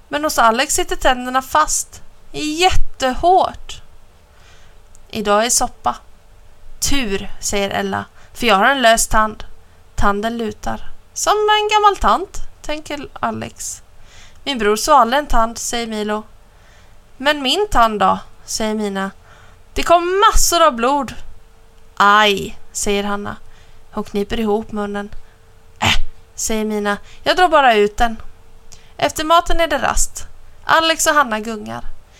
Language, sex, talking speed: Swedish, female, 130 wpm